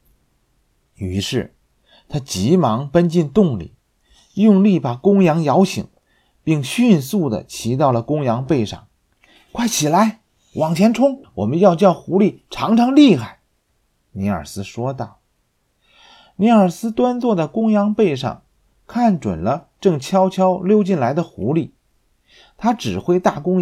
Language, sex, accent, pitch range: Chinese, male, native, 130-200 Hz